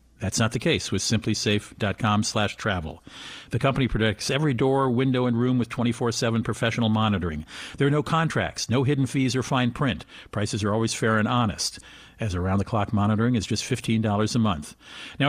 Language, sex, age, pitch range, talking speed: English, male, 50-69, 110-135 Hz, 175 wpm